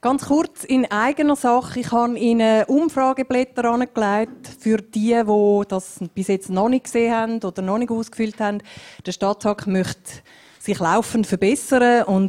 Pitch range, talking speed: 180-230 Hz, 155 wpm